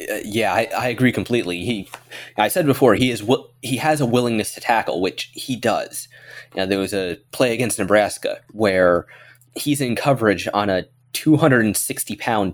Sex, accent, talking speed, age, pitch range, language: male, American, 165 wpm, 20-39, 105-130 Hz, English